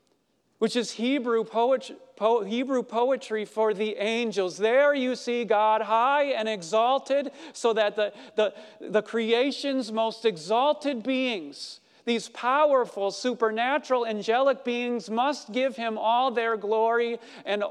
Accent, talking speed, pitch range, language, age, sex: American, 120 wpm, 200-250 Hz, English, 40-59, male